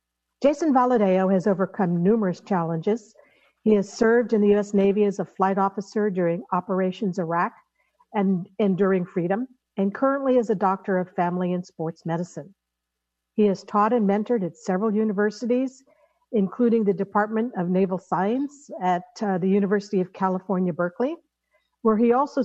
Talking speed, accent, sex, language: 150 wpm, American, female, English